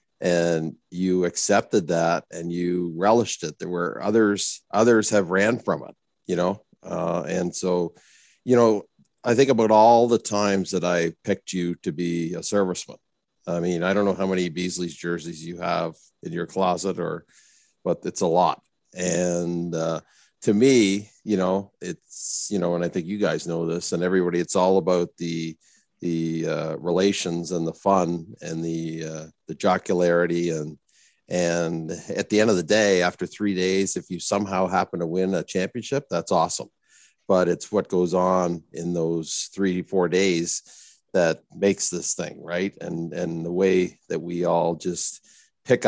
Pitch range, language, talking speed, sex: 85-95 Hz, English, 175 wpm, male